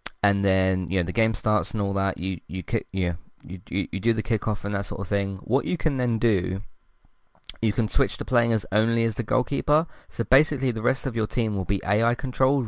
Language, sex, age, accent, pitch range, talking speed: English, male, 20-39, British, 95-115 Hz, 240 wpm